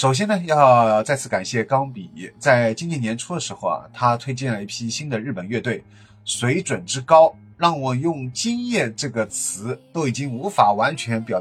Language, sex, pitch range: Chinese, male, 110-140 Hz